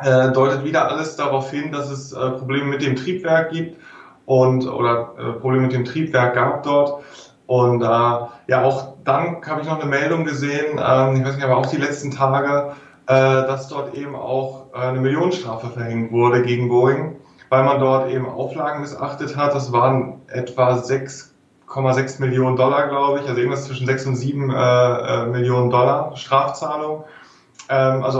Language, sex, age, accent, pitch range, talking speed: German, male, 20-39, German, 130-140 Hz, 165 wpm